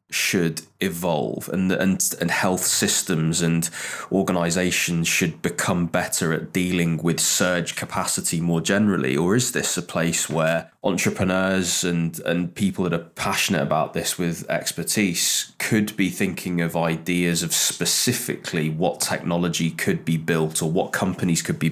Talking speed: 145 wpm